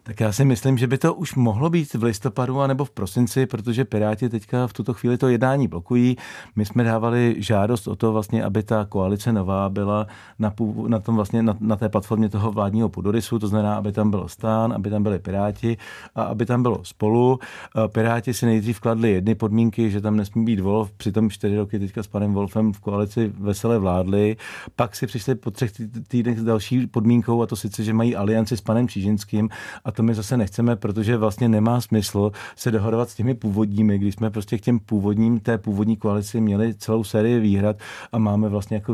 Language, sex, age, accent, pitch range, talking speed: Czech, male, 40-59, native, 105-115 Hz, 205 wpm